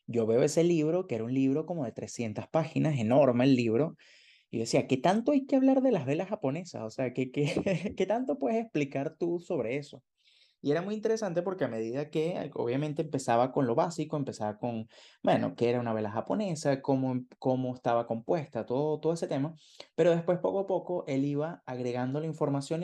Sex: male